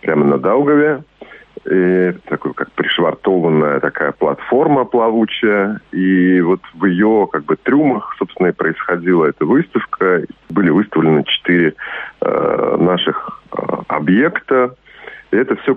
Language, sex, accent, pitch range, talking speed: Russian, male, native, 80-100 Hz, 120 wpm